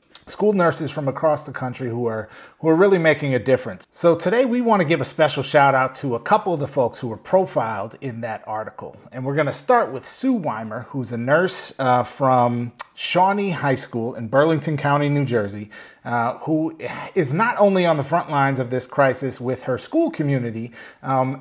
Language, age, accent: English, 30-49, American